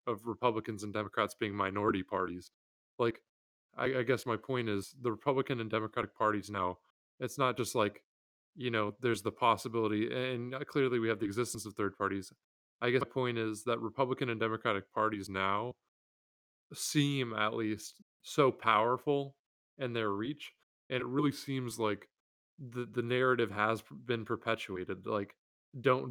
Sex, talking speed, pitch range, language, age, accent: male, 160 wpm, 105-120 Hz, English, 20-39, American